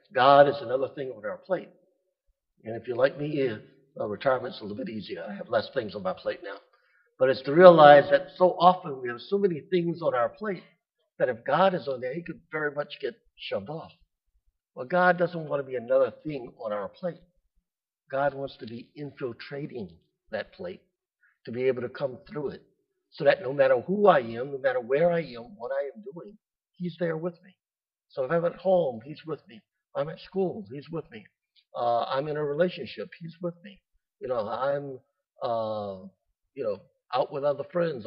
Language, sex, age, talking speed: English, male, 60-79, 205 wpm